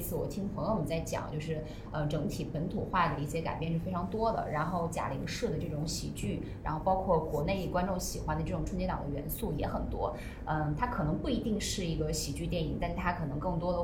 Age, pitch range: 20-39, 155-185 Hz